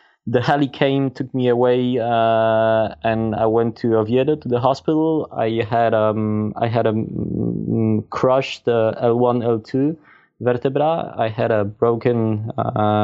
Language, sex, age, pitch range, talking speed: German, male, 20-39, 110-135 Hz, 140 wpm